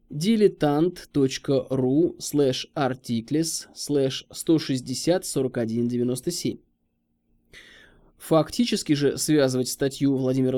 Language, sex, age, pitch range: Russian, male, 20-39, 125-165 Hz